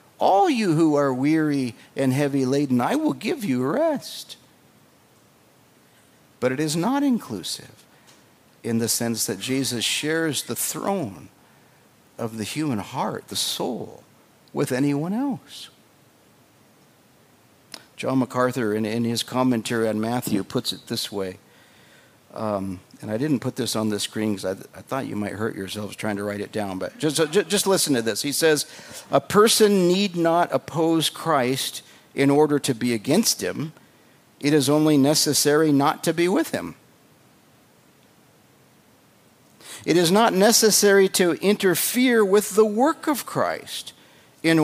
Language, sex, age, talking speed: English, male, 50-69, 150 wpm